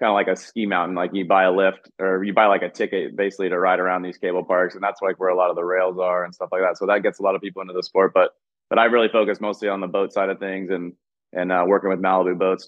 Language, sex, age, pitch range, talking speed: English, male, 20-39, 90-95 Hz, 315 wpm